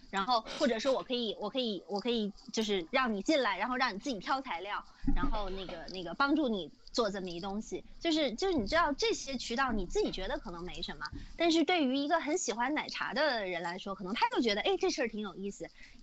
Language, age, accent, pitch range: Chinese, 20-39, native, 200-270 Hz